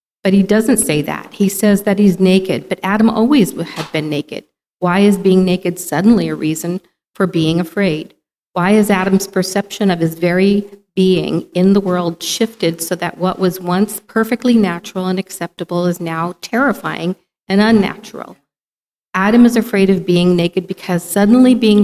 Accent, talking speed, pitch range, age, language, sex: American, 170 wpm, 175-200 Hz, 40-59, English, female